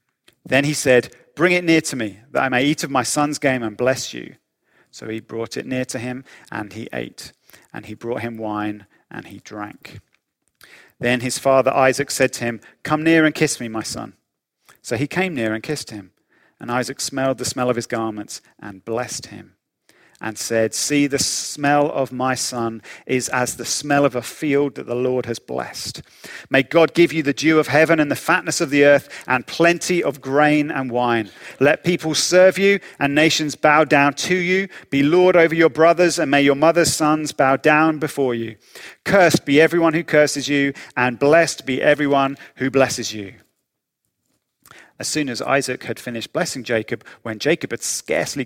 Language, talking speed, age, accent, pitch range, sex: English, 195 wpm, 40-59, British, 120-150 Hz, male